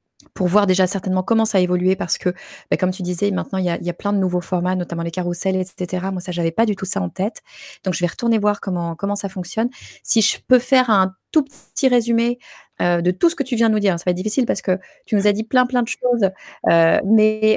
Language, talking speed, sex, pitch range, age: French, 275 wpm, female, 175-220 Hz, 20-39